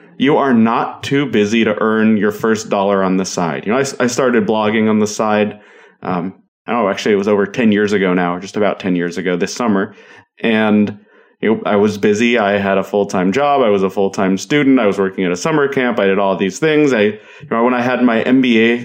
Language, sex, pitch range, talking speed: English, male, 110-135 Hz, 245 wpm